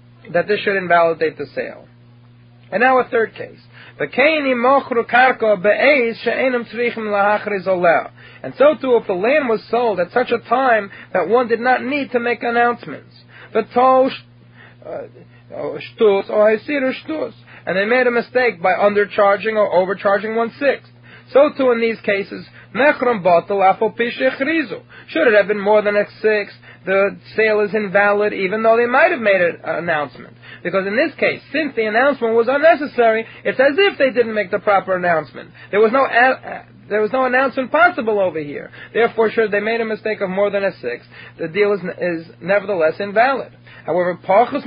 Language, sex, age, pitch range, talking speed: English, male, 30-49, 200-255 Hz, 155 wpm